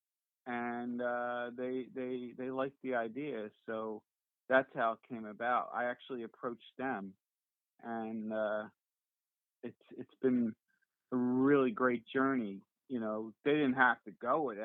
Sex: male